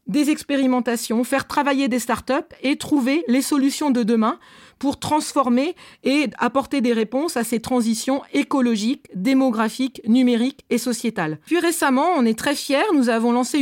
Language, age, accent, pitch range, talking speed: French, 40-59, French, 230-290 Hz, 155 wpm